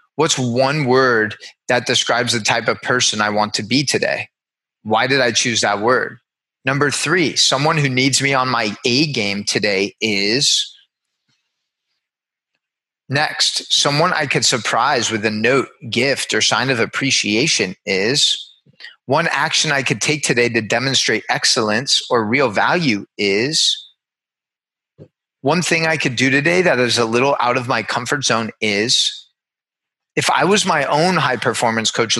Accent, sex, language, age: American, male, English, 30-49